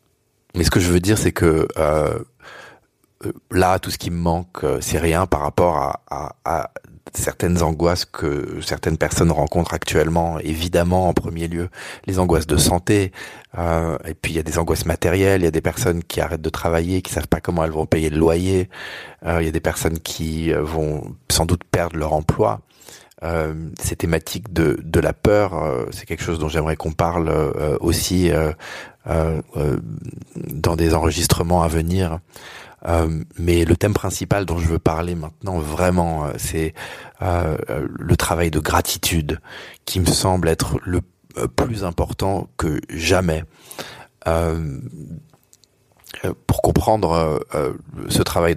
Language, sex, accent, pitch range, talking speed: French, male, French, 80-90 Hz, 165 wpm